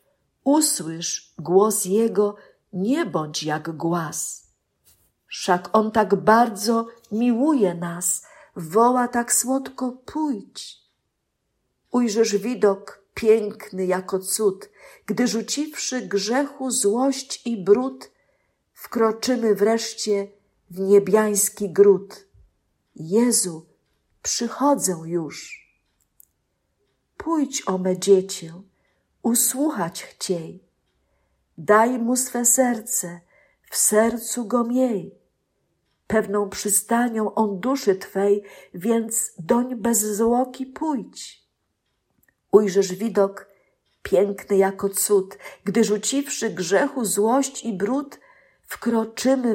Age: 50-69